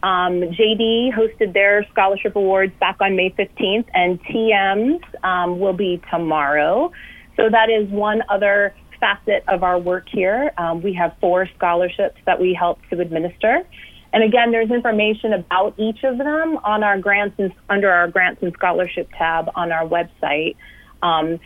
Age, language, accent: 30-49, English, American